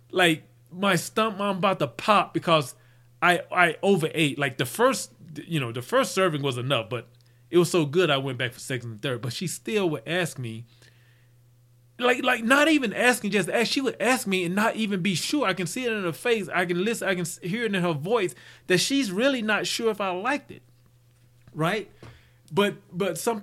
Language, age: English, 30-49